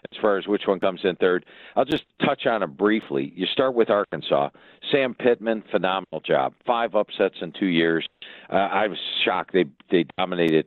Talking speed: 190 wpm